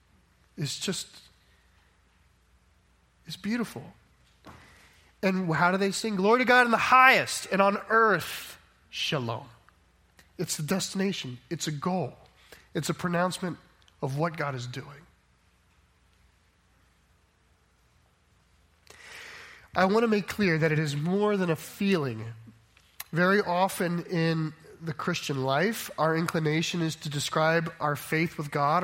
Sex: male